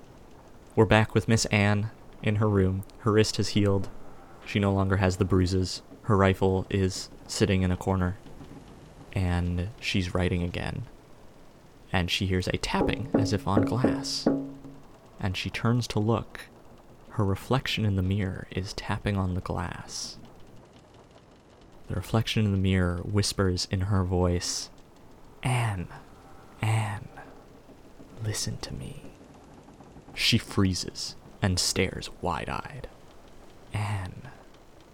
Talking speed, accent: 125 wpm, American